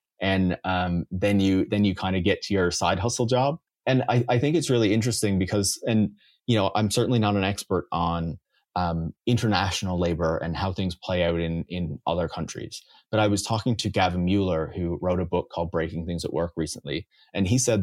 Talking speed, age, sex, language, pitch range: 210 wpm, 30-49, male, English, 90-105 Hz